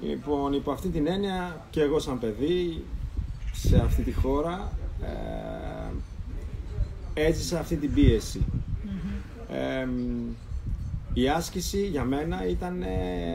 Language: Greek